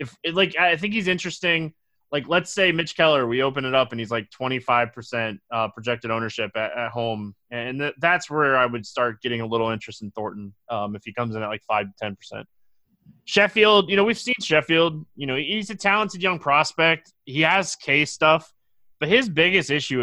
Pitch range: 120-165 Hz